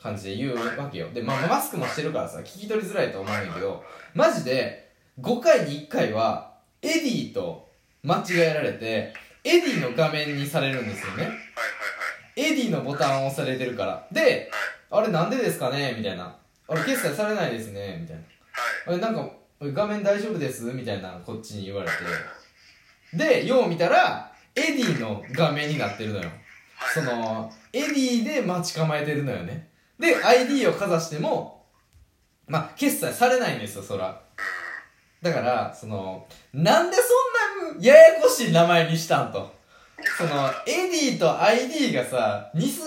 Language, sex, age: Japanese, male, 20-39